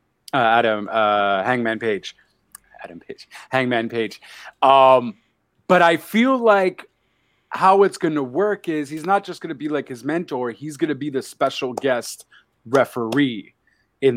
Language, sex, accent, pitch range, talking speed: English, male, American, 130-165 Hz, 160 wpm